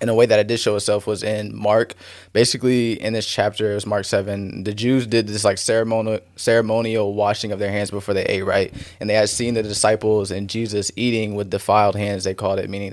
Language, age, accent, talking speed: English, 20-39, American, 230 wpm